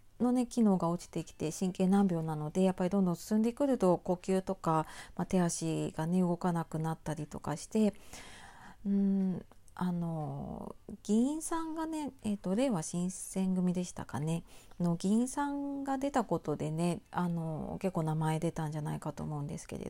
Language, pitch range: Japanese, 165-210 Hz